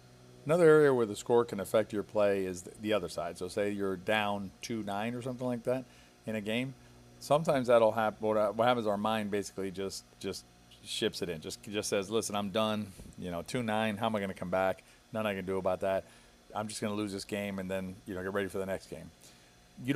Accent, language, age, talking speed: American, English, 40-59, 250 wpm